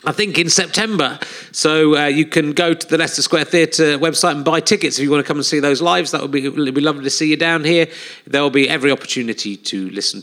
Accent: British